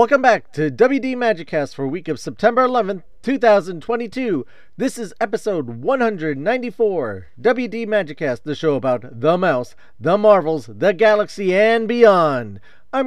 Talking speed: 135 wpm